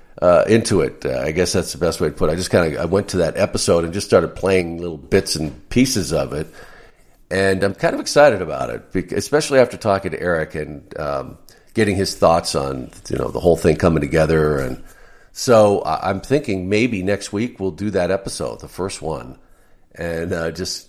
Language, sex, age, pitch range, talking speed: English, male, 50-69, 80-100 Hz, 215 wpm